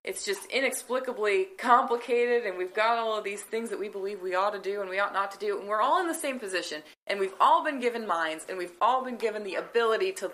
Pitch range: 190-250 Hz